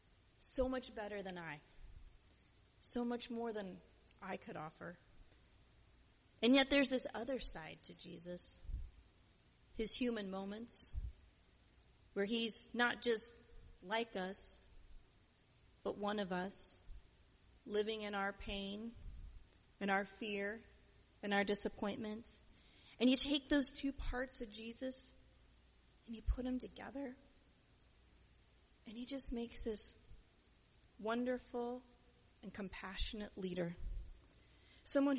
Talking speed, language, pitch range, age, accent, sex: 115 wpm, English, 190-245 Hz, 30-49, American, female